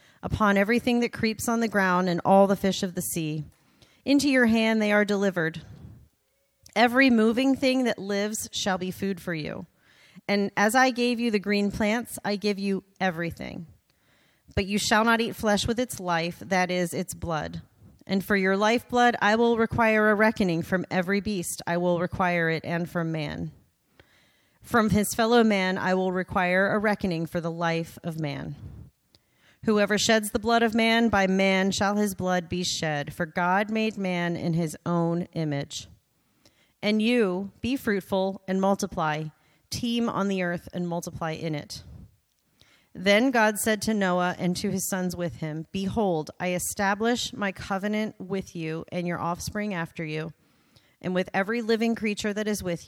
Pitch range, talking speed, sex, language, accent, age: 175-215 Hz, 175 wpm, female, English, American, 40-59